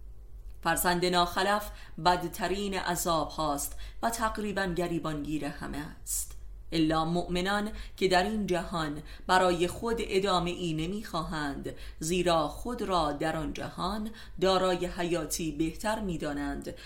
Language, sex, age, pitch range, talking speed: Persian, female, 30-49, 165-200 Hz, 105 wpm